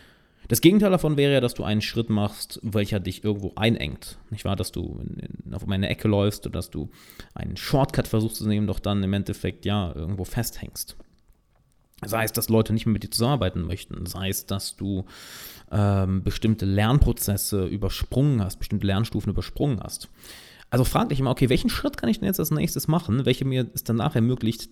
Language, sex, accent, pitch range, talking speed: German, male, German, 100-140 Hz, 205 wpm